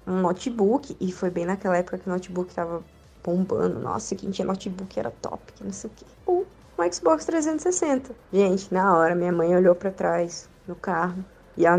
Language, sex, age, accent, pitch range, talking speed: Portuguese, female, 20-39, Brazilian, 190-235 Hz, 200 wpm